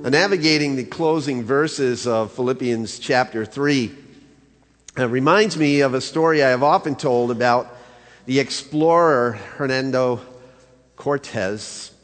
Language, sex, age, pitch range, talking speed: English, male, 50-69, 120-165 Hz, 120 wpm